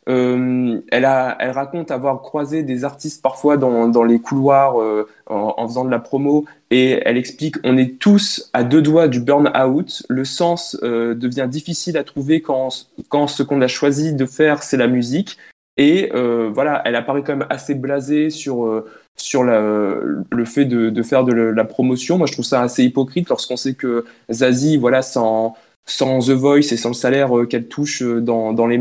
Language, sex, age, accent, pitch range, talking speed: French, male, 20-39, French, 120-145 Hz, 200 wpm